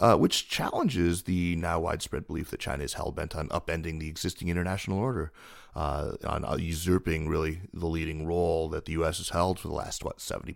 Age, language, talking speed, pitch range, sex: 30-49, English, 195 wpm, 80-95 Hz, male